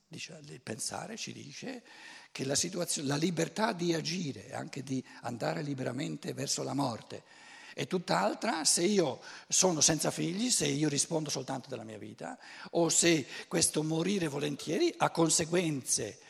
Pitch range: 130-180 Hz